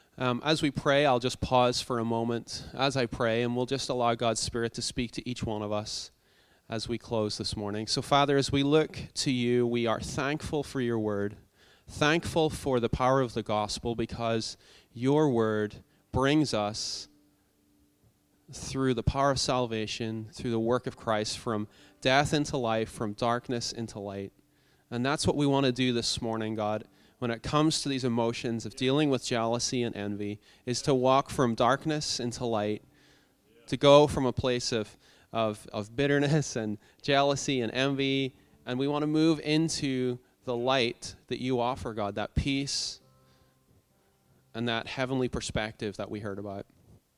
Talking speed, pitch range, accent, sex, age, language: 175 wpm, 110-135 Hz, American, male, 30-49, English